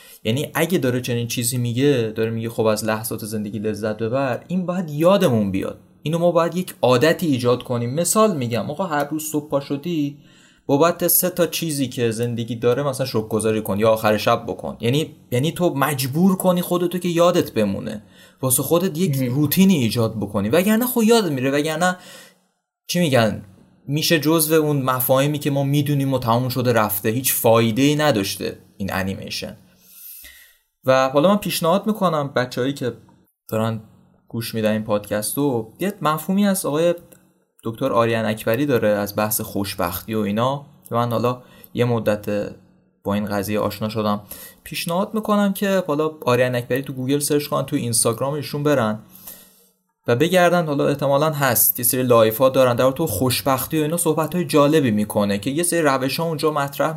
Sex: male